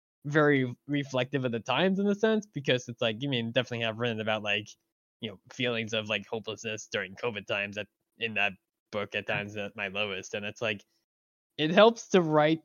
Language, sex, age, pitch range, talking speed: English, male, 10-29, 110-155 Hz, 210 wpm